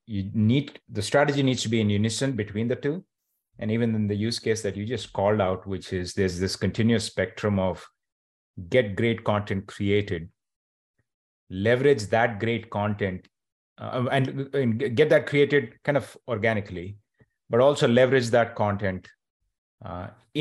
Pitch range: 95-120 Hz